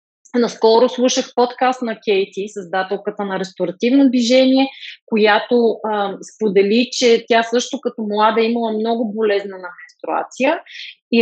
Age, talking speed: 30-49, 125 wpm